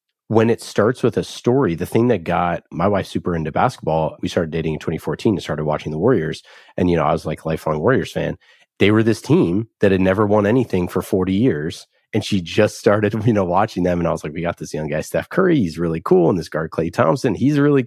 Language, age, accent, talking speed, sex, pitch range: English, 30-49, American, 255 wpm, male, 90-110 Hz